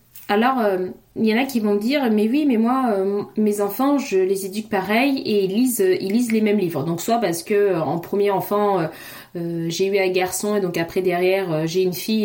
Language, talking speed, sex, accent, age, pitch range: French, 250 wpm, female, French, 20-39, 185-230 Hz